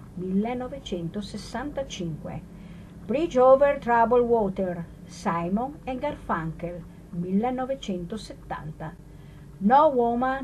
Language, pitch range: Italian, 170-245 Hz